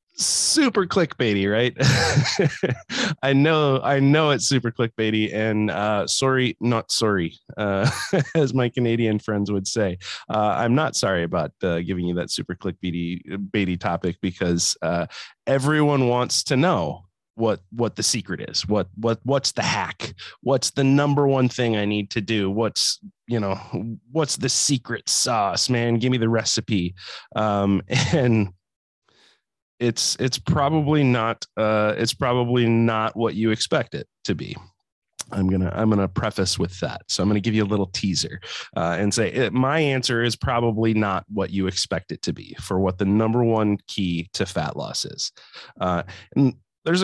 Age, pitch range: 20-39, 100-130 Hz